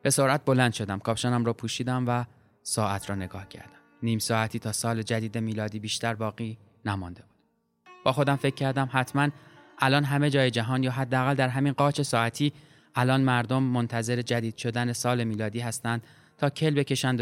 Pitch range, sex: 110-130 Hz, male